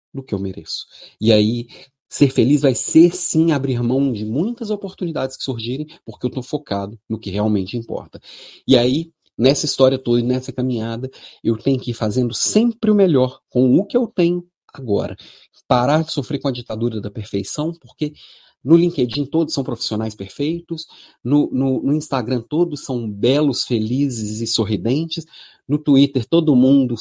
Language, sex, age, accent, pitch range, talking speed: Portuguese, male, 40-59, Brazilian, 115-155 Hz, 165 wpm